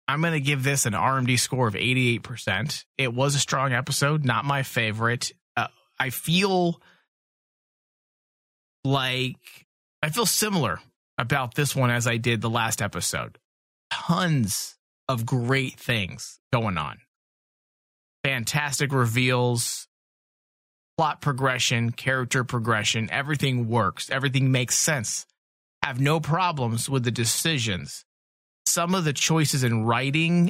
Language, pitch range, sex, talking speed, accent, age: English, 115-140 Hz, male, 125 wpm, American, 30-49